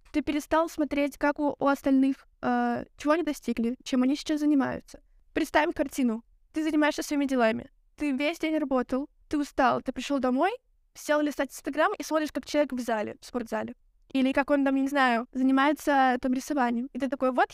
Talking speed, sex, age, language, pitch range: 180 wpm, female, 20-39, Russian, 250-300 Hz